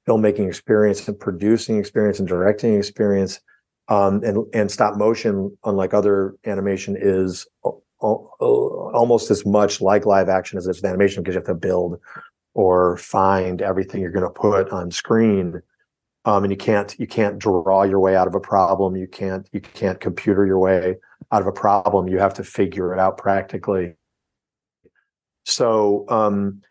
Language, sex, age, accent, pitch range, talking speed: English, male, 40-59, American, 95-105 Hz, 170 wpm